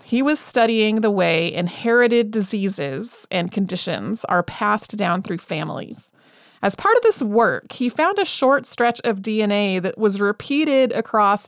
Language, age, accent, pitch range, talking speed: English, 30-49, American, 195-245 Hz, 155 wpm